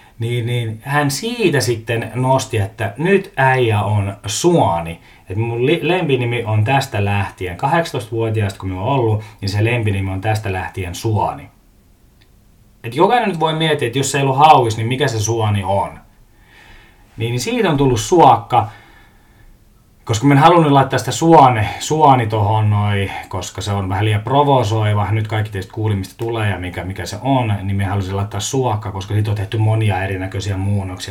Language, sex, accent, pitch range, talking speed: Finnish, male, native, 100-125 Hz, 165 wpm